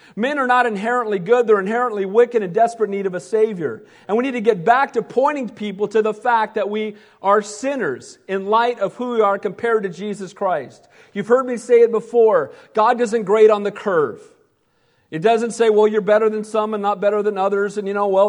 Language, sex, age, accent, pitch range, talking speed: English, male, 40-59, American, 205-245 Hz, 230 wpm